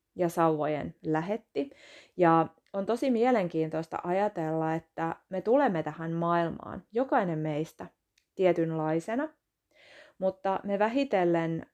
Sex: female